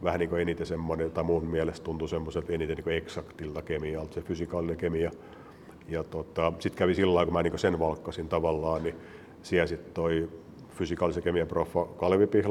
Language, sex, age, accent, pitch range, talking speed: Finnish, male, 50-69, native, 80-85 Hz, 175 wpm